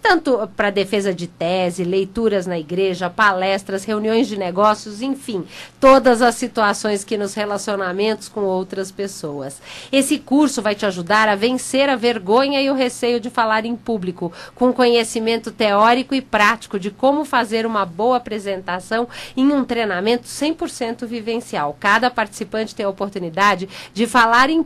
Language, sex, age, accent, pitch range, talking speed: Portuguese, female, 40-59, Brazilian, 195-250 Hz, 150 wpm